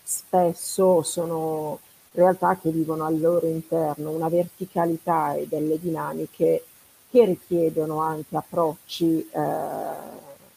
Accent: native